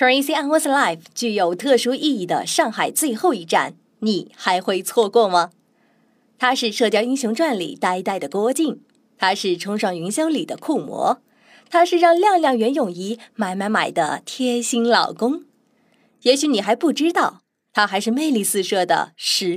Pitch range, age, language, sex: 200-280 Hz, 20-39, Chinese, female